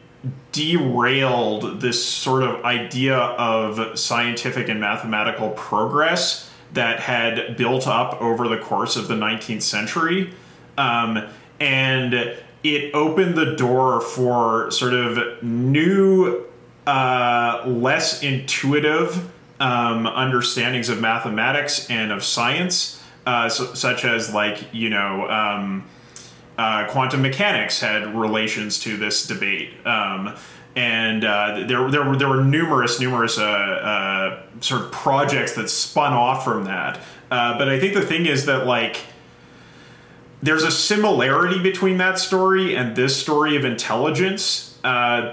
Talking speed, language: 130 wpm, English